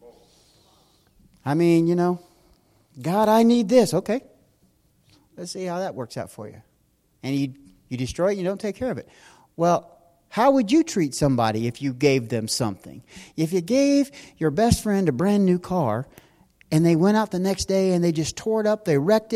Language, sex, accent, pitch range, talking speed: English, male, American, 165-225 Hz, 200 wpm